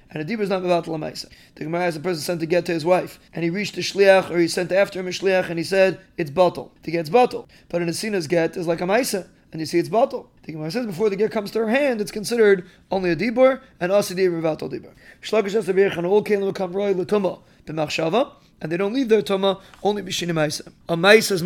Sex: male